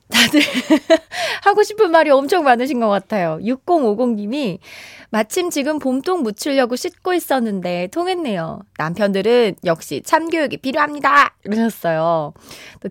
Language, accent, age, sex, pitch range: Korean, native, 20-39, female, 195-315 Hz